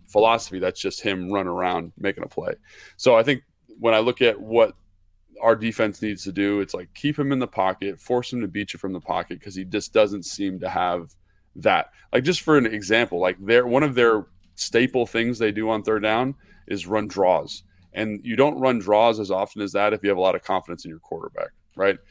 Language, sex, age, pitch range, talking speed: English, male, 20-39, 95-115 Hz, 230 wpm